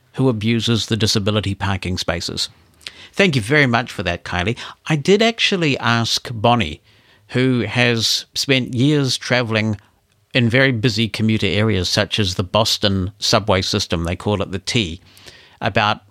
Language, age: English, 60-79